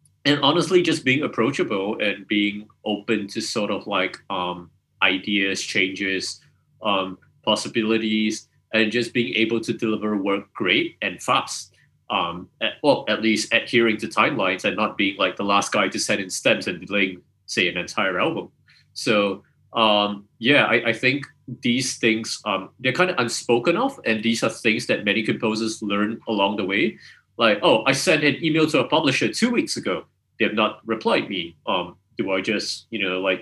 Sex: male